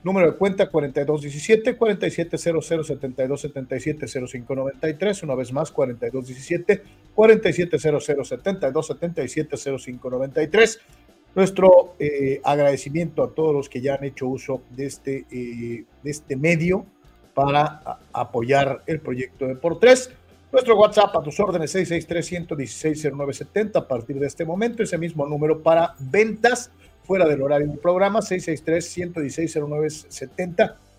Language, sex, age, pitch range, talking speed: Spanish, male, 50-69, 140-185 Hz, 120 wpm